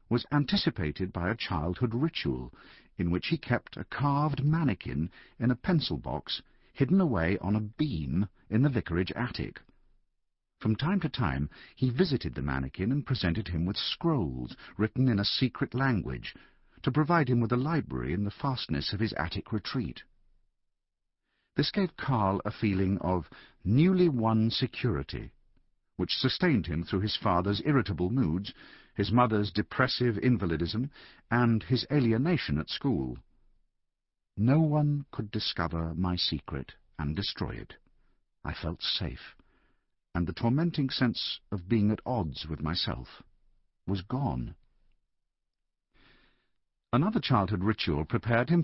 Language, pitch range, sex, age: English, 90-130 Hz, male, 50-69